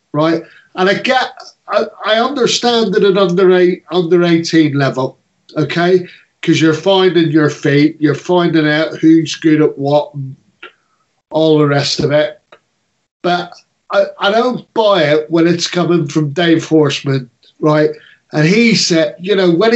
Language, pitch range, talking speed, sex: English, 155-180 Hz, 160 wpm, male